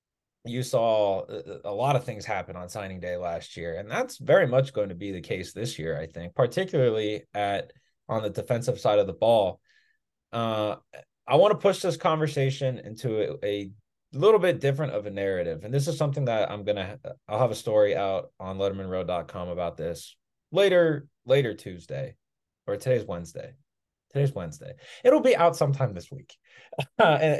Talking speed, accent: 180 wpm, American